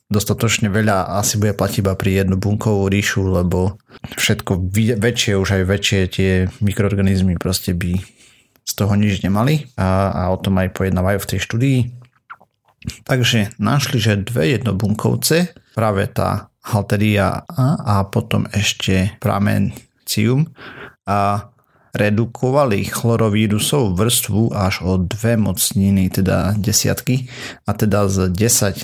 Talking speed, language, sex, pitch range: 120 wpm, Slovak, male, 95-115 Hz